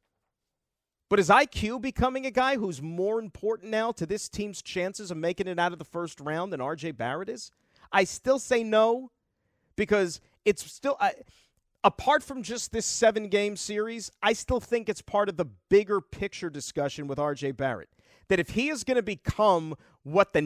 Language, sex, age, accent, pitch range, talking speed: English, male, 40-59, American, 175-230 Hz, 175 wpm